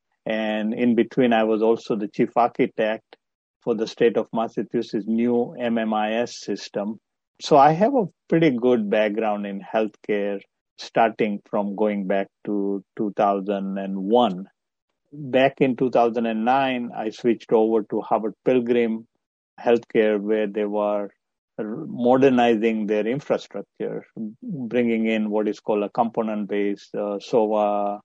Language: English